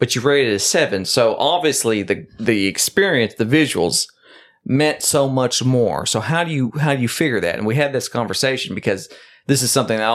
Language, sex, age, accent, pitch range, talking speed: English, male, 40-59, American, 115-155 Hz, 215 wpm